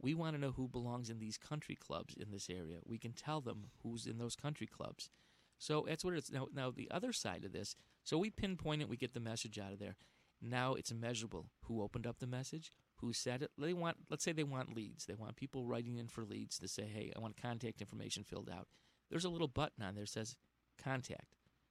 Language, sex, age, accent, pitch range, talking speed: English, male, 40-59, American, 110-135 Hz, 240 wpm